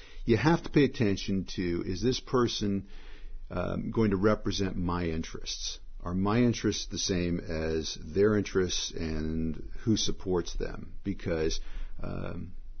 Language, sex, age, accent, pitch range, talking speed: English, male, 50-69, American, 85-115 Hz, 135 wpm